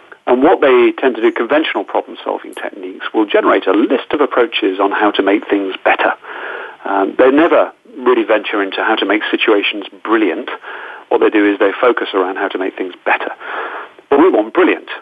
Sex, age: male, 40-59